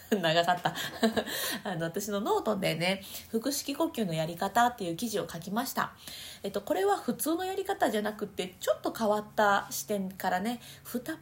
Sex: female